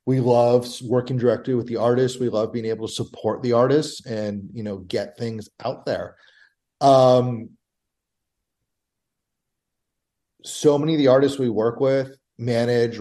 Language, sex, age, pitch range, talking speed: English, male, 30-49, 110-125 Hz, 150 wpm